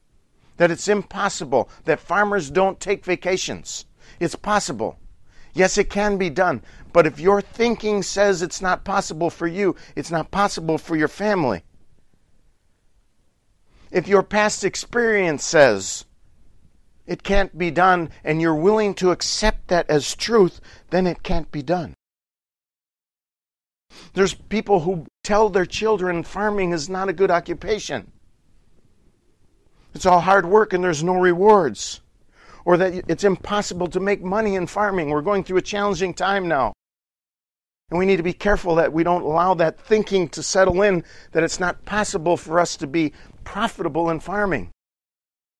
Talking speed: 150 wpm